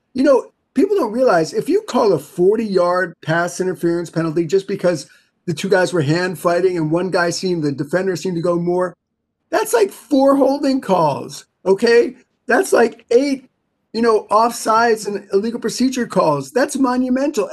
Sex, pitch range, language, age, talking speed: male, 180-230 Hz, English, 30-49, 170 wpm